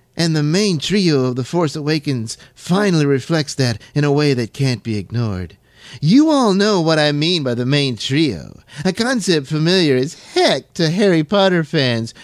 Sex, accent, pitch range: male, American, 125-165 Hz